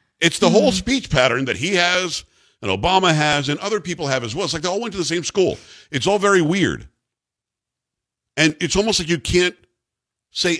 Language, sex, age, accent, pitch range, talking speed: English, male, 50-69, American, 125-165 Hz, 210 wpm